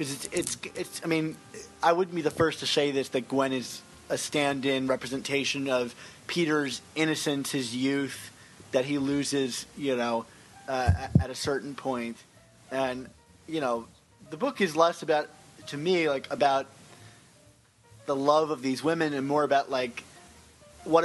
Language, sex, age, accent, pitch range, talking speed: English, male, 30-49, American, 130-160 Hz, 165 wpm